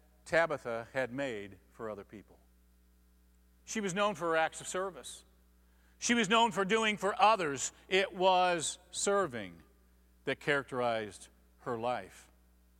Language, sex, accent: English, male, American